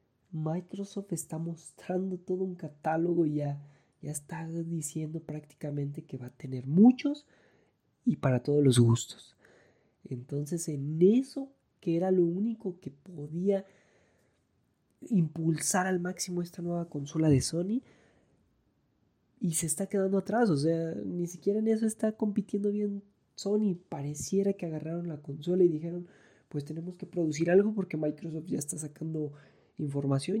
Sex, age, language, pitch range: male, 20-39, Spanish, 145-185 Hz